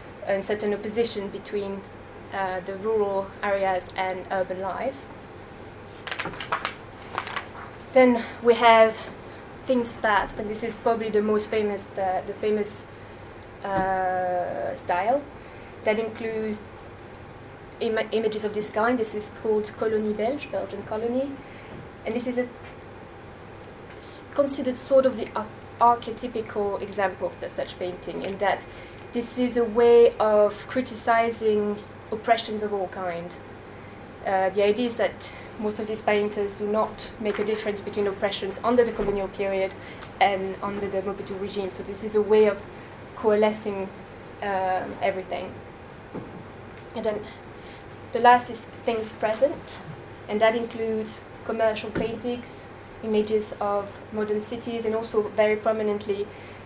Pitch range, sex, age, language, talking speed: 195-225 Hz, female, 20-39, English, 130 wpm